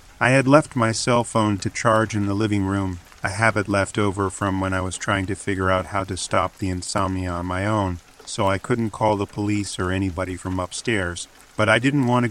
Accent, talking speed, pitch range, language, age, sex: American, 230 wpm, 95-110 Hz, English, 40-59, male